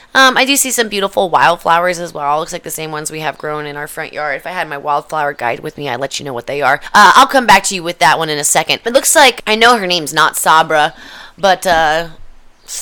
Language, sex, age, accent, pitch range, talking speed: English, female, 20-39, American, 150-205 Hz, 285 wpm